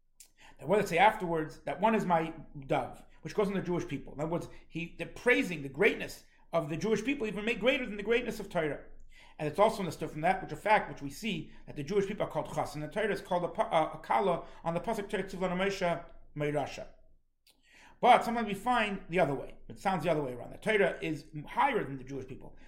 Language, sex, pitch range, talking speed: English, male, 160-205 Hz, 240 wpm